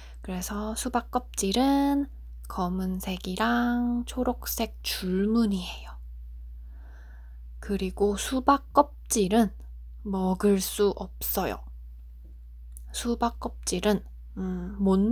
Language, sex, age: Korean, female, 20-39